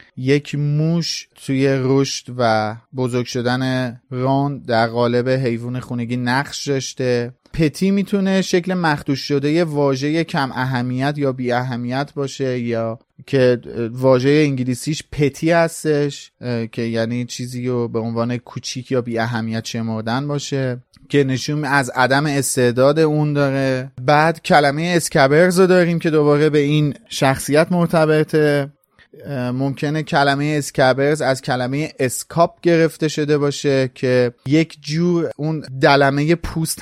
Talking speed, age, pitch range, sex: 125 wpm, 30-49, 125-155 Hz, male